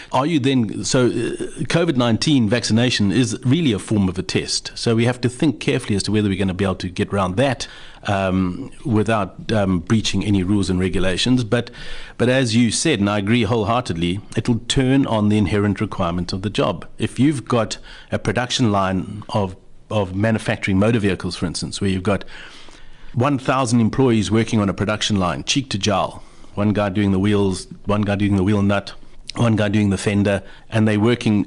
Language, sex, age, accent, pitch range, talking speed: English, male, 60-79, South African, 95-120 Hz, 195 wpm